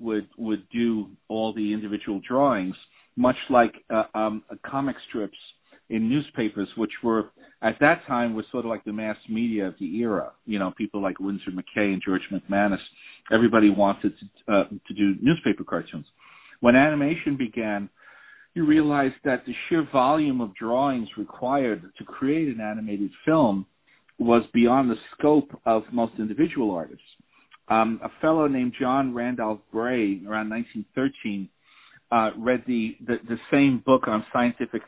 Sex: male